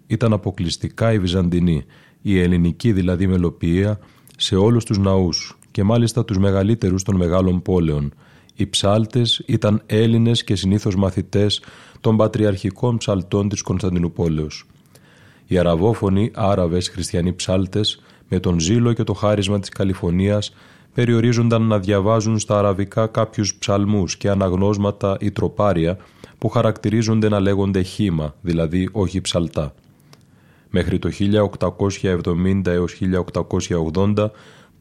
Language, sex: Greek, male